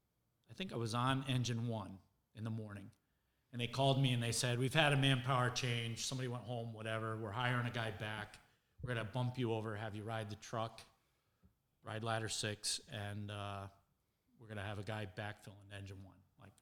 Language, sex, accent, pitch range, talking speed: English, male, American, 105-120 Hz, 200 wpm